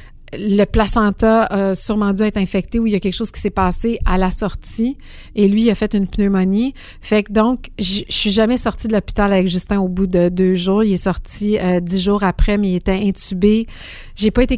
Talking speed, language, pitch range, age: 235 wpm, French, 185-210 Hz, 50-69